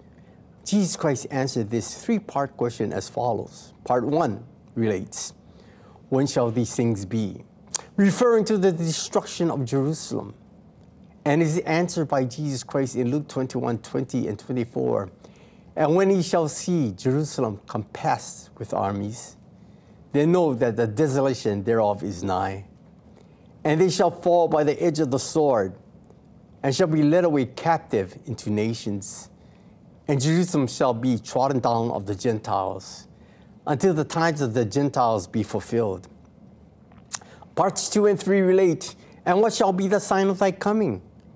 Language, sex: English, male